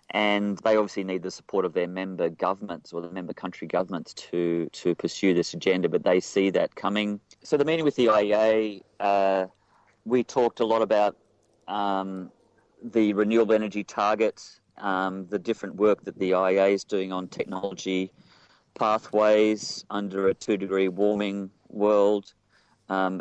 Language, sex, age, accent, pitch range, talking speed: English, male, 40-59, Australian, 90-105 Hz, 155 wpm